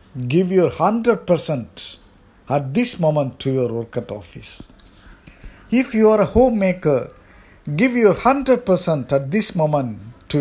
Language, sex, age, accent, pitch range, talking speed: English, male, 50-69, Indian, 120-175 Hz, 135 wpm